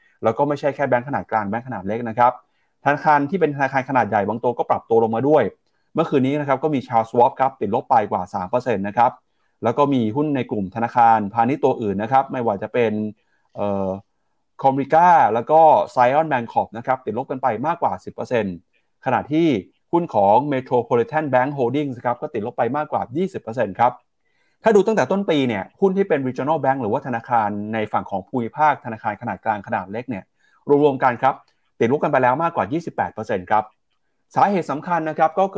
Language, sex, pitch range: Thai, male, 115-150 Hz